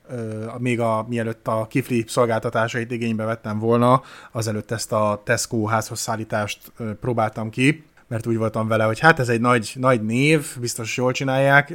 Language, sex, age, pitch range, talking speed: Hungarian, male, 30-49, 110-130 Hz, 165 wpm